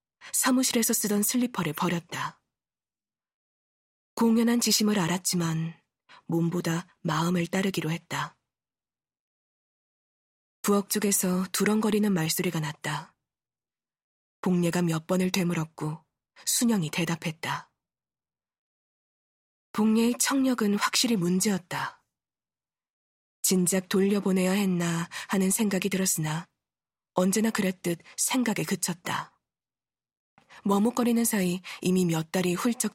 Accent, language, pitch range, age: native, Korean, 170-210 Hz, 20-39